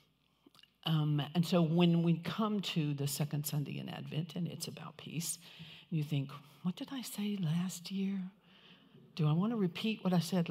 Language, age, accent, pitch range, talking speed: English, 60-79, American, 155-185 Hz, 185 wpm